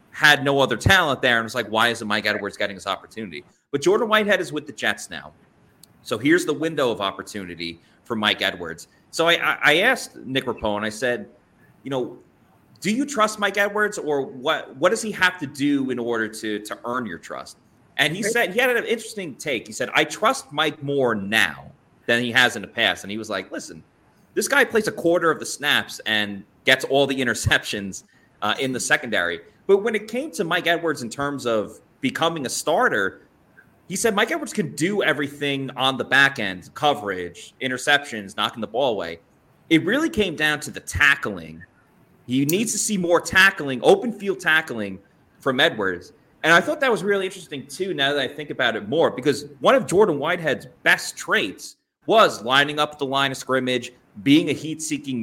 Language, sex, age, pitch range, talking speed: English, male, 30-49, 115-170 Hz, 200 wpm